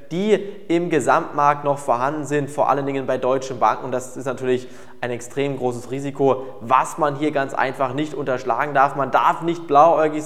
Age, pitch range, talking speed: 20-39, 135-155 Hz, 185 wpm